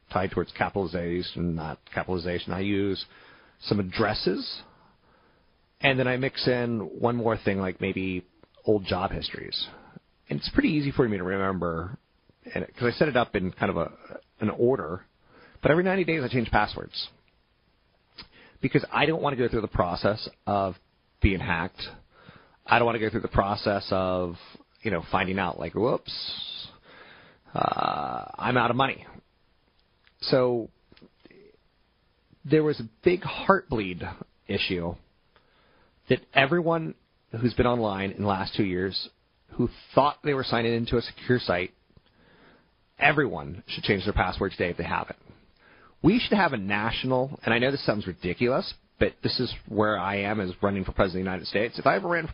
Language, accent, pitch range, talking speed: English, American, 95-125 Hz, 165 wpm